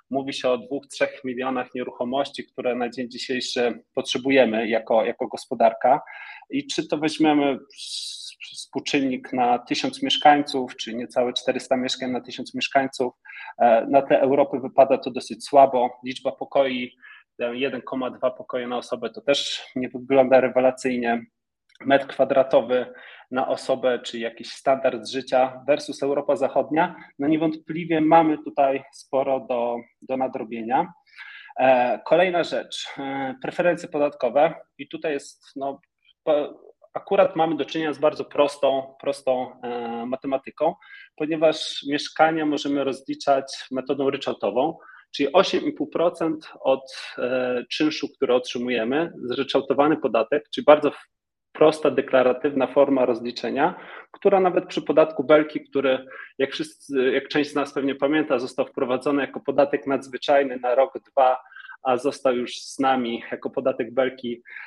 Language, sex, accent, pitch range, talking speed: Polish, male, native, 125-145 Hz, 130 wpm